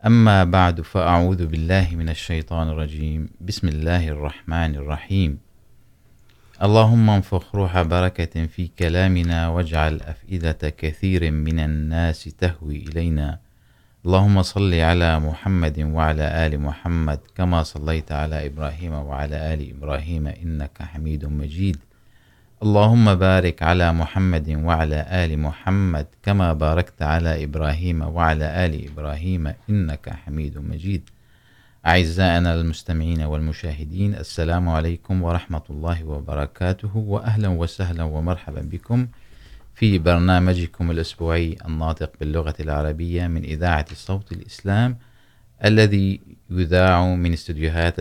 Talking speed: 105 wpm